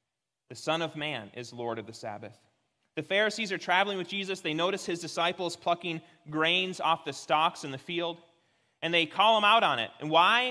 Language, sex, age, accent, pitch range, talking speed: English, male, 30-49, American, 145-195 Hz, 205 wpm